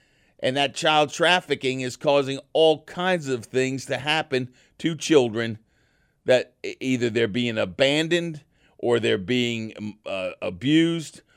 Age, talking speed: 50-69, 125 wpm